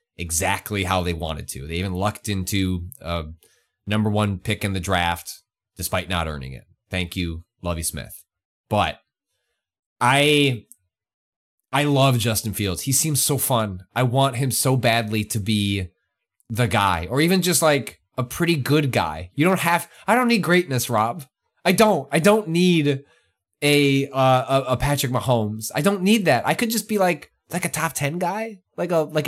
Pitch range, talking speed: 95-145 Hz, 180 wpm